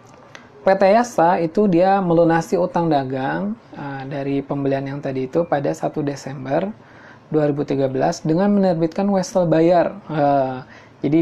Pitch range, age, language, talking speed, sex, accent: 140-170 Hz, 20-39, Indonesian, 125 wpm, male, native